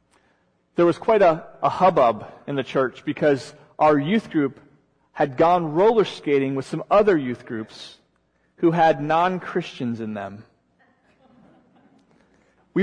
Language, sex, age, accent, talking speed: English, male, 40-59, American, 130 wpm